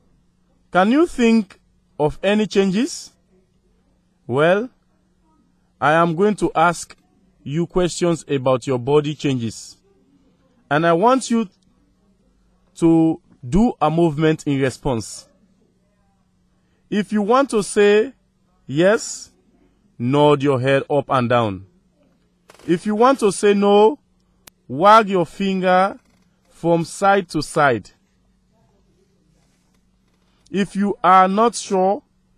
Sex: male